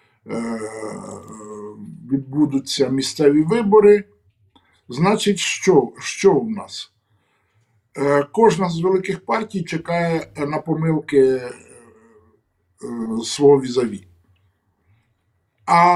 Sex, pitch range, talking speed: male, 130-175 Hz, 65 wpm